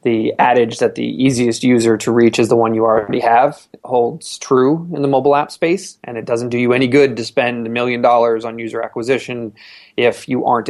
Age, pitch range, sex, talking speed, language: 20-39, 115-130 Hz, male, 225 wpm, English